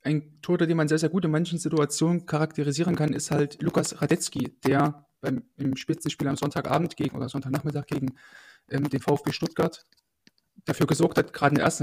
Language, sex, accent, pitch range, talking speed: German, male, German, 140-155 Hz, 190 wpm